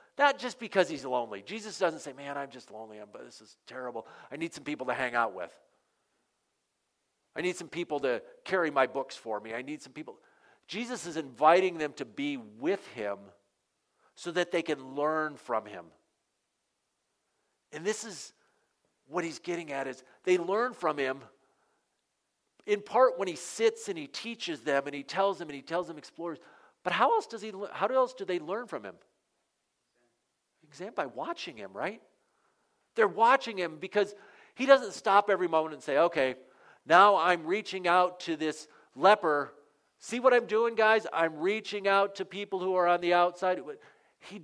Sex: male